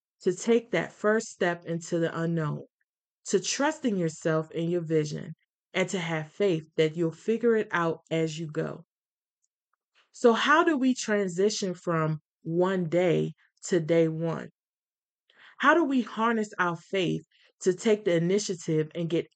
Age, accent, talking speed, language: 20-39, American, 150 wpm, English